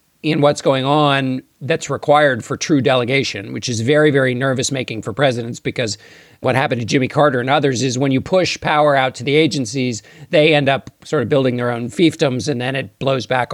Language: English